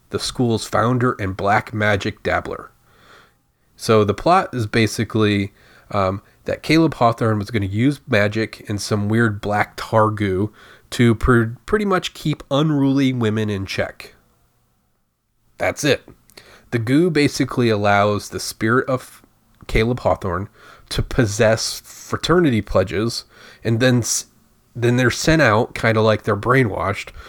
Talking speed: 140 wpm